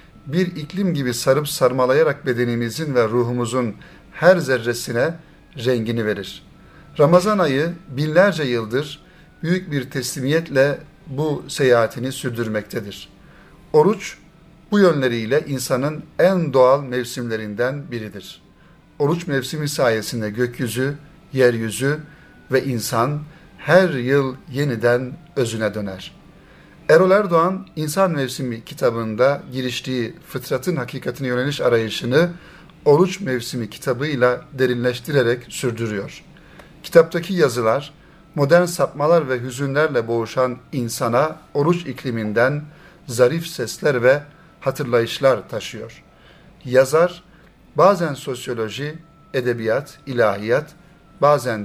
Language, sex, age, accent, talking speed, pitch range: Turkish, male, 60-79, native, 90 wpm, 120-160 Hz